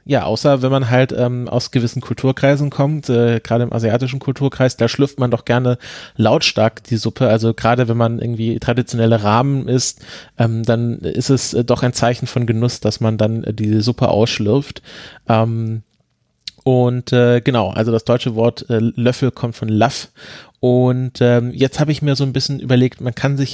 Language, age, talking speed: German, 30-49, 190 wpm